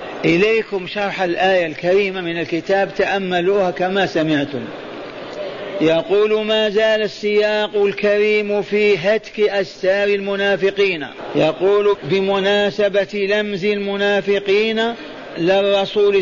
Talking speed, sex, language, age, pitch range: 85 wpm, male, Arabic, 50-69, 190-205 Hz